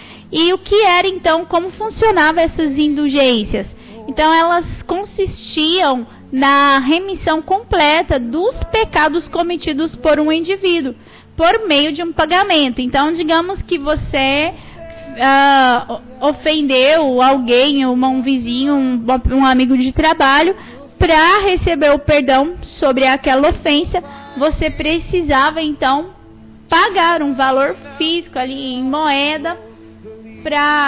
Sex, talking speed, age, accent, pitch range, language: female, 110 wpm, 20-39, Brazilian, 275-335 Hz, Portuguese